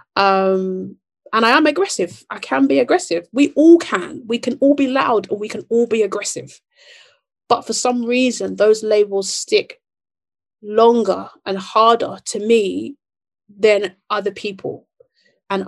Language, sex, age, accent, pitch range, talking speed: English, female, 30-49, British, 185-220 Hz, 150 wpm